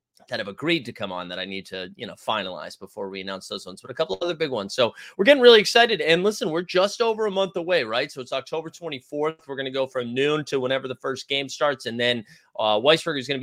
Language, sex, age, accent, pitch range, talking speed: English, male, 30-49, American, 130-180 Hz, 265 wpm